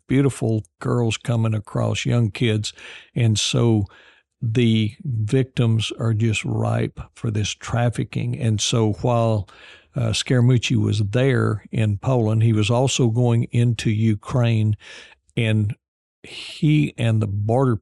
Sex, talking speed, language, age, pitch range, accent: male, 120 wpm, English, 60-79, 110-120 Hz, American